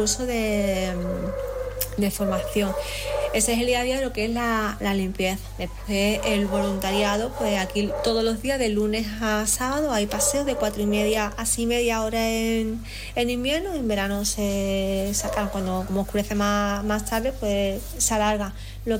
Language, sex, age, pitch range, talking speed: Spanish, female, 20-39, 205-230 Hz, 185 wpm